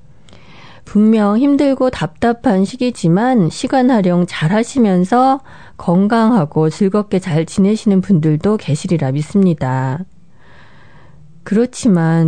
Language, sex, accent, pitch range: Korean, female, native, 160-220 Hz